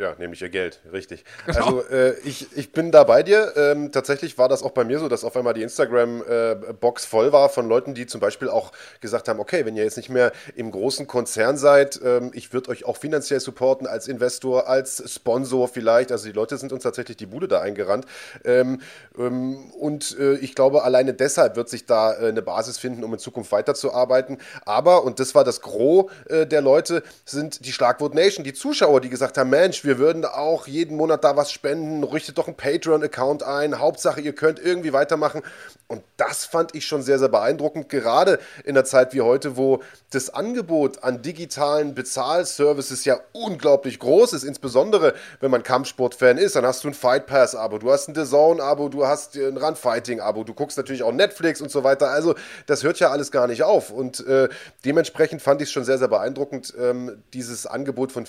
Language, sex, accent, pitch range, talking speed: German, male, German, 125-150 Hz, 210 wpm